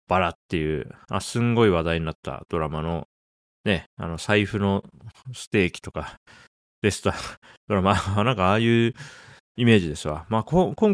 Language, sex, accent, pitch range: Japanese, male, native, 80-120 Hz